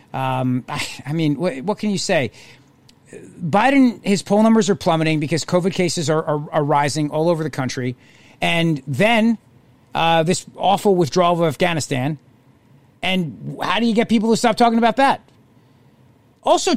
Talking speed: 165 wpm